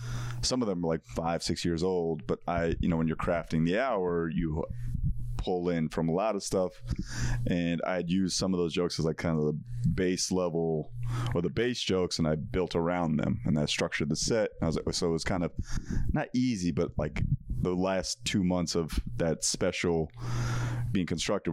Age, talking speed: 30-49, 210 wpm